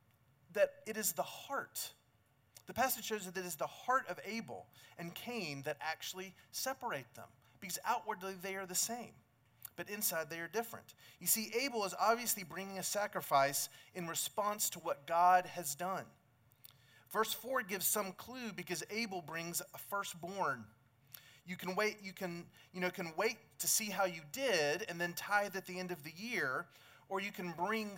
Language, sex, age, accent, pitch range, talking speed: English, male, 30-49, American, 145-195 Hz, 180 wpm